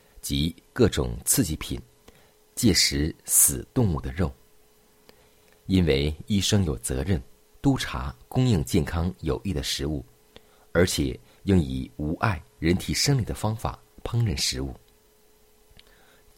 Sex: male